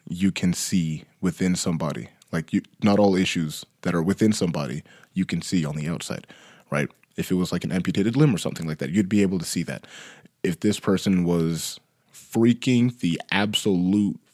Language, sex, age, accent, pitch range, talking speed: English, male, 20-39, American, 90-105 Hz, 185 wpm